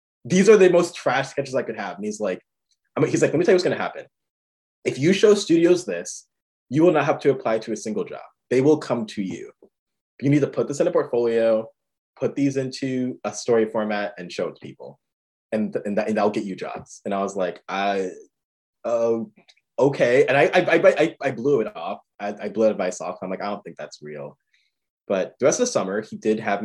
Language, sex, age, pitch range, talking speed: English, male, 20-39, 100-160 Hz, 245 wpm